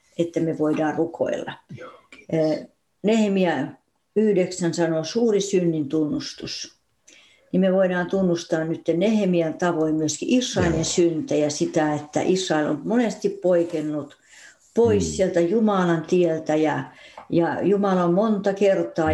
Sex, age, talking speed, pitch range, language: female, 60-79, 115 wpm, 160-195 Hz, Finnish